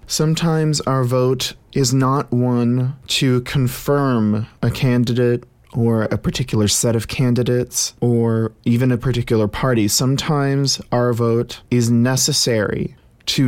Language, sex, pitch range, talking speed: English, male, 110-130 Hz, 120 wpm